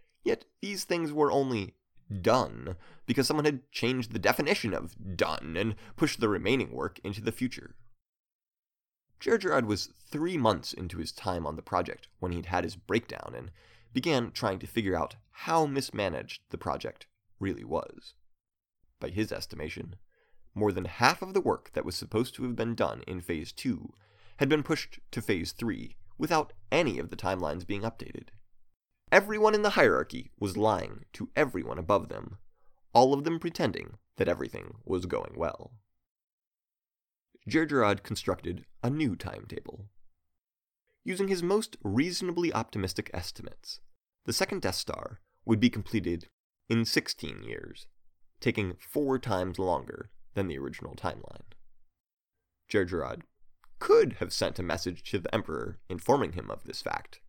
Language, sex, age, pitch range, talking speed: English, male, 30-49, 95-135 Hz, 150 wpm